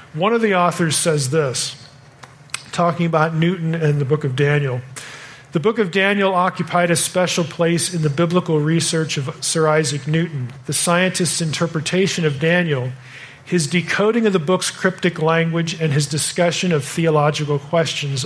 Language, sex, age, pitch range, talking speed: English, male, 40-59, 140-175 Hz, 160 wpm